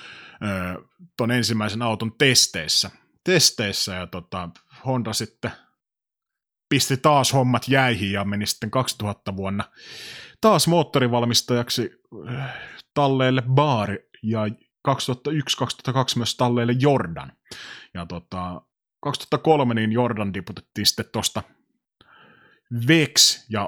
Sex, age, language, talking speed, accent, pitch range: male, 30-49, Finnish, 90 wpm, native, 95-140 Hz